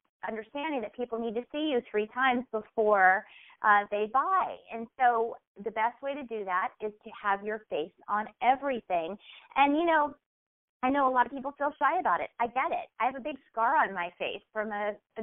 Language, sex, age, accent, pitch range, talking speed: English, female, 30-49, American, 210-260 Hz, 215 wpm